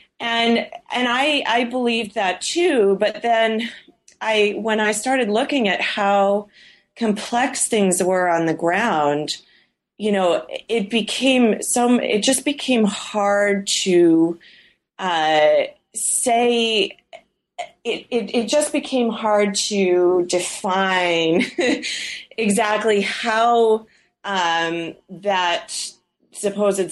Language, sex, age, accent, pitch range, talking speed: English, female, 30-49, American, 165-230 Hz, 105 wpm